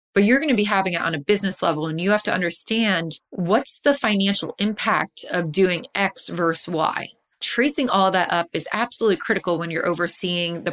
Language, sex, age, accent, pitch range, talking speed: English, female, 20-39, American, 165-215 Hz, 200 wpm